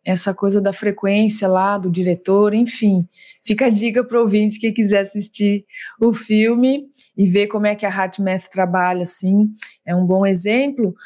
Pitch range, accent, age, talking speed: 210-280 Hz, Brazilian, 20-39, 175 wpm